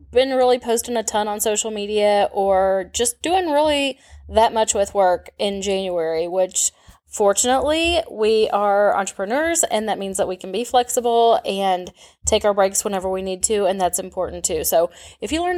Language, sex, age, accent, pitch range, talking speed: English, female, 10-29, American, 185-230 Hz, 180 wpm